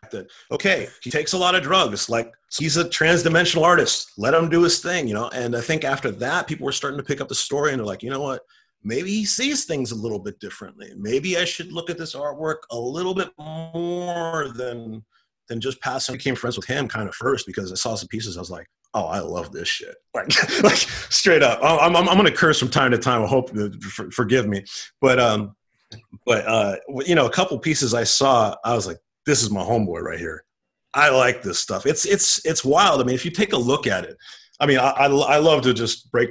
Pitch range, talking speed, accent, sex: 115-165 Hz, 240 wpm, American, male